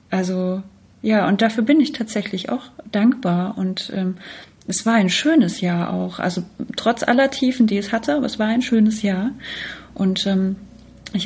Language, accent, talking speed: German, German, 175 wpm